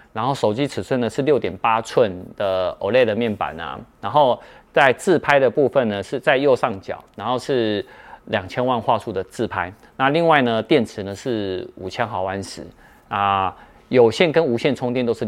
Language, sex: Chinese, male